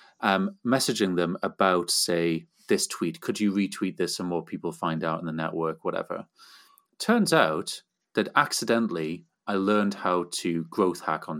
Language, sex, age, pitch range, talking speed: English, male, 30-49, 85-105 Hz, 165 wpm